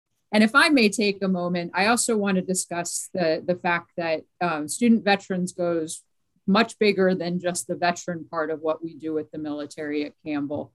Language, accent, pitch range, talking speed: English, American, 155-175 Hz, 200 wpm